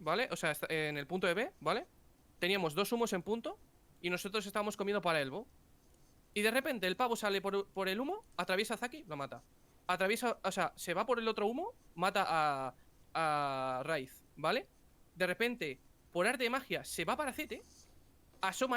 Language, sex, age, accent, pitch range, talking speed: Spanish, male, 20-39, Spanish, 160-240 Hz, 190 wpm